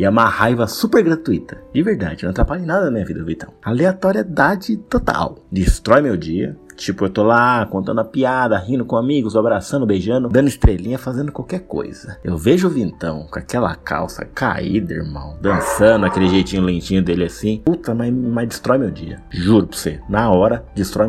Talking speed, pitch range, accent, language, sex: 190 wpm, 95-130 Hz, Brazilian, Portuguese, male